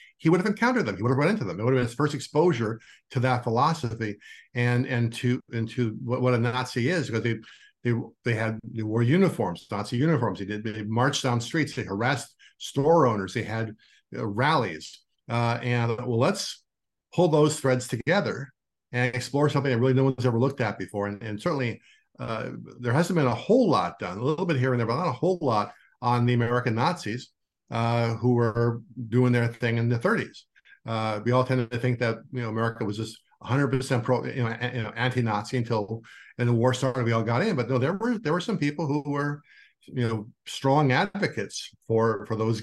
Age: 50-69